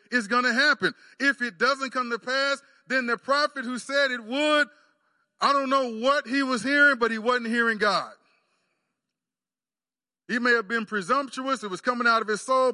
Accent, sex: American, male